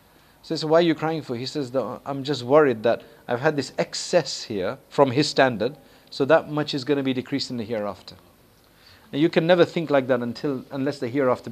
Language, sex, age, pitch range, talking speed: English, male, 50-69, 120-155 Hz, 230 wpm